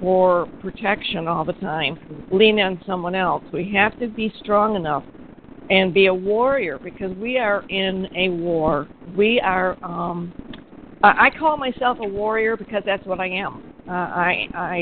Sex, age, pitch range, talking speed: female, 50-69, 190-245 Hz, 165 wpm